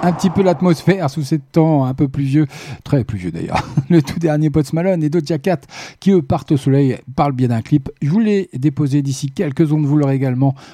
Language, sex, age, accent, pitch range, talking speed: French, male, 50-69, French, 125-160 Hz, 235 wpm